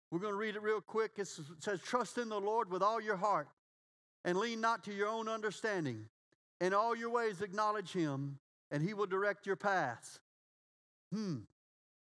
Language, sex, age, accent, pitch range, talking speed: English, male, 50-69, American, 185-230 Hz, 185 wpm